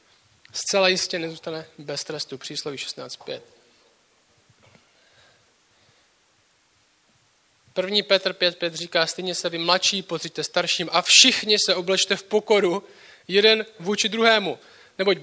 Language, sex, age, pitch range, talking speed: Czech, male, 20-39, 190-220 Hz, 105 wpm